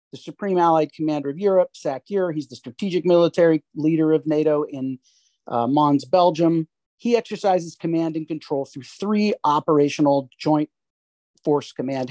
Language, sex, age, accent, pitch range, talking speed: English, male, 40-59, American, 145-180 Hz, 140 wpm